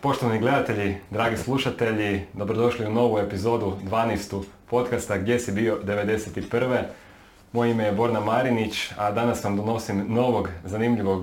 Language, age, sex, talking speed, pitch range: Croatian, 30-49, male, 135 wpm, 100-120 Hz